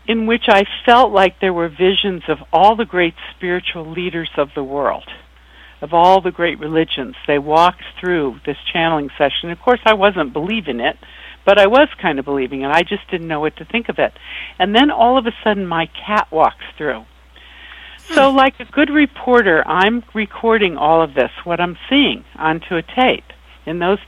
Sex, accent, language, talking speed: female, American, English, 195 wpm